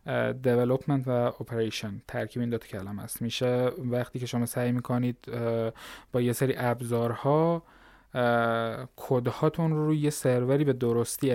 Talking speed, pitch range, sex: 145 wpm, 125-165 Hz, male